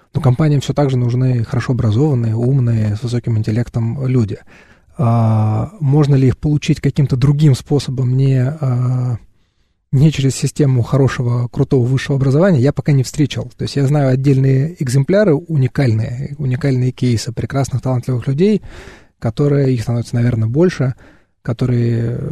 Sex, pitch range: male, 120-145 Hz